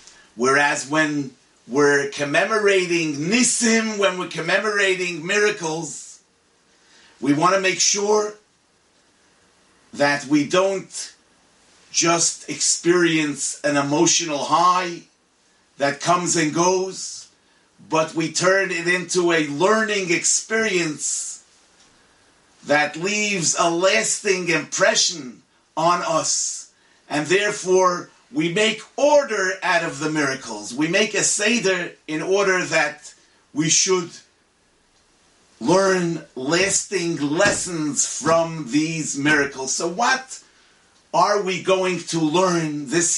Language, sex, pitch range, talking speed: English, male, 155-195 Hz, 100 wpm